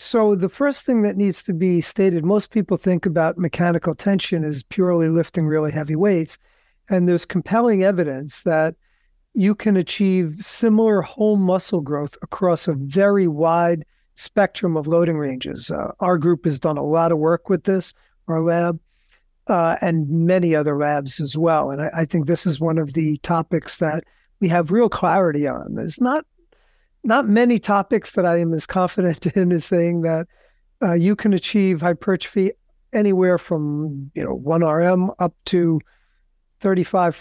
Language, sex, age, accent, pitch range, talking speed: English, male, 50-69, American, 160-195 Hz, 170 wpm